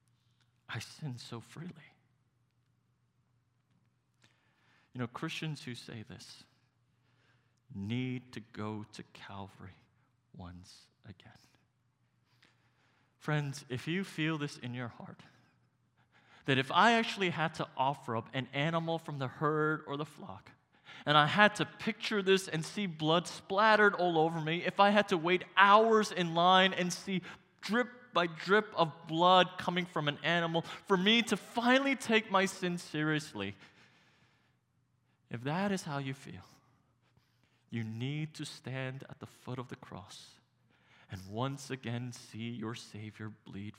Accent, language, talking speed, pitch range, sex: American, English, 145 wpm, 125-180 Hz, male